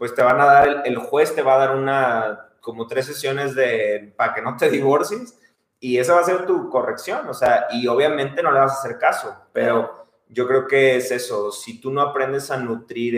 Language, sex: Spanish, male